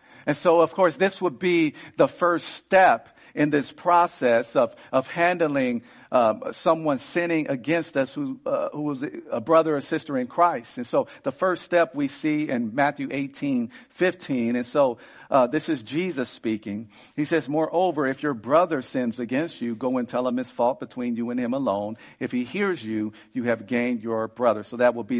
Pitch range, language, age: 120-175 Hz, English, 50-69